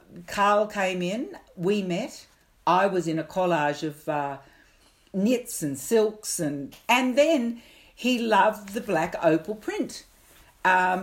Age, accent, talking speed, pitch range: 60-79, Australian, 135 wpm, 155-200 Hz